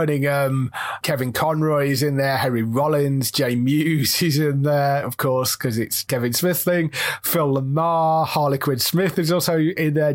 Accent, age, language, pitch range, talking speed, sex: British, 30-49, English, 135-175 Hz, 160 wpm, male